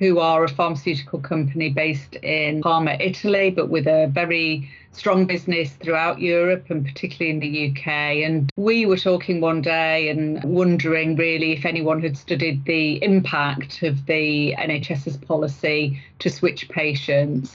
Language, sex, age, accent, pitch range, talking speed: English, female, 30-49, British, 155-180 Hz, 150 wpm